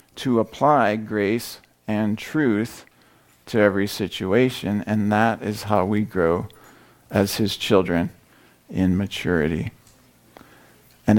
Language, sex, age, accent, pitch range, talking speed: English, male, 50-69, American, 95-115 Hz, 105 wpm